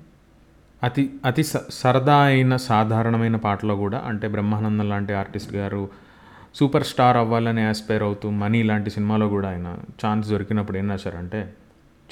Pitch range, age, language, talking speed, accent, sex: 100-120 Hz, 30-49, English, 90 wpm, Indian, male